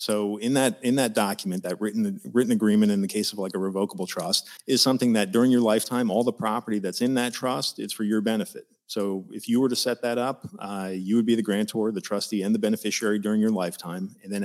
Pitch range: 100-120 Hz